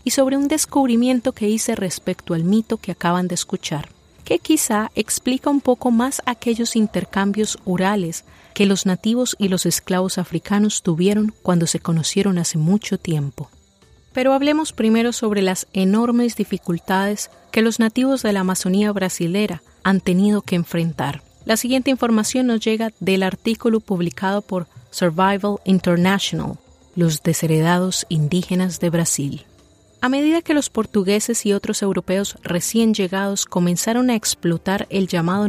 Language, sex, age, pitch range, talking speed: English, female, 30-49, 175-220 Hz, 145 wpm